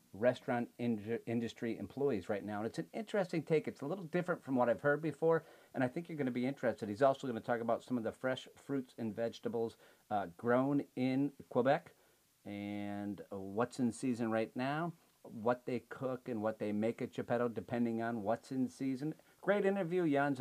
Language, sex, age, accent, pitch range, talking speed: English, male, 50-69, American, 115-150 Hz, 195 wpm